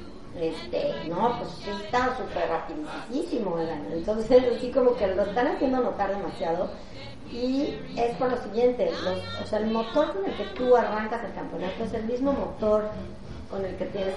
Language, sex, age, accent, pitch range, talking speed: Spanish, female, 40-59, Mexican, 185-235 Hz, 165 wpm